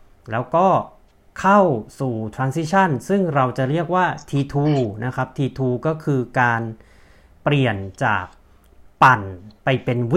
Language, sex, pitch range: Thai, male, 115-150 Hz